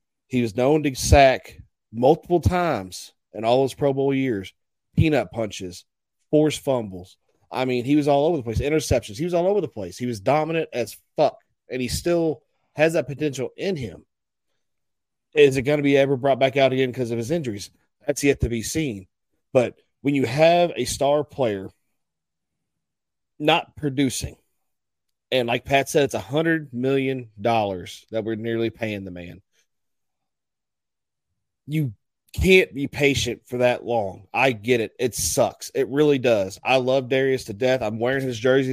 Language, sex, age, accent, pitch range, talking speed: English, male, 40-59, American, 115-140 Hz, 170 wpm